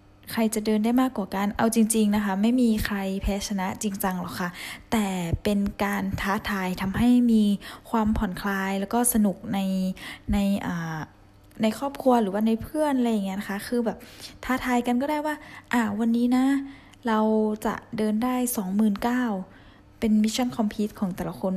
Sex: female